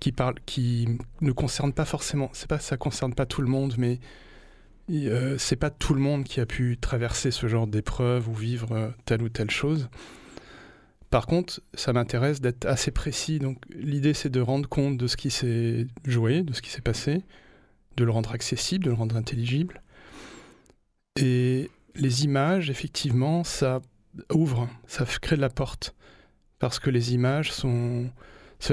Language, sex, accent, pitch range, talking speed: French, male, French, 115-140 Hz, 170 wpm